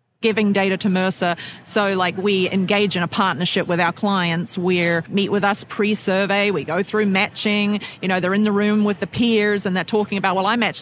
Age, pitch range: 40-59, 180-215 Hz